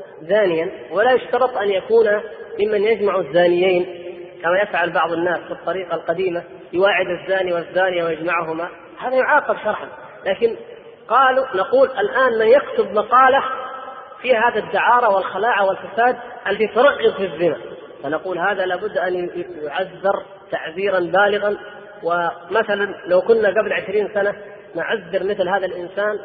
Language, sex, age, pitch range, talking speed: Arabic, female, 30-49, 180-230 Hz, 125 wpm